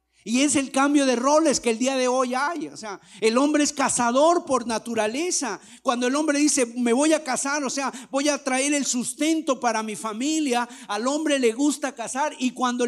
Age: 50-69